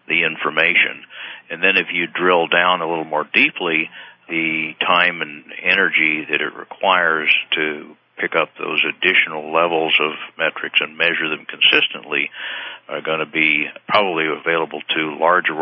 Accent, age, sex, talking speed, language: American, 60-79, male, 150 wpm, English